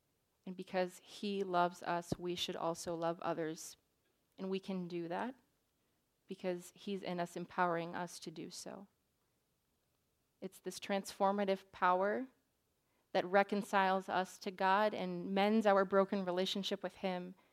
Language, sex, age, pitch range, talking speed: English, female, 30-49, 175-195 Hz, 135 wpm